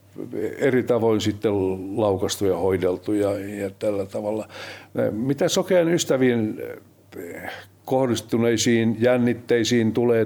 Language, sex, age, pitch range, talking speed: Finnish, male, 60-79, 100-125 Hz, 80 wpm